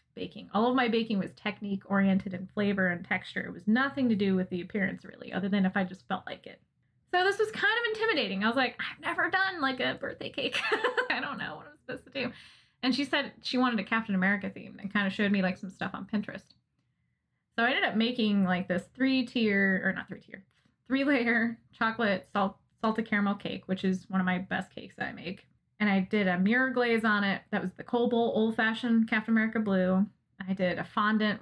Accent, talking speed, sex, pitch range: American, 235 wpm, female, 190-230 Hz